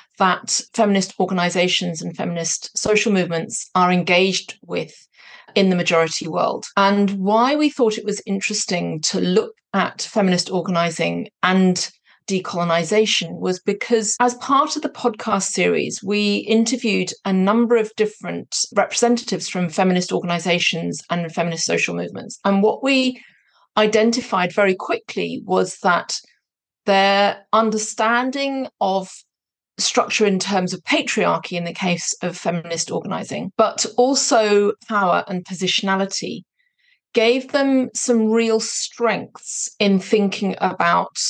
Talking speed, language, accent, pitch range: 125 wpm, English, British, 180-220 Hz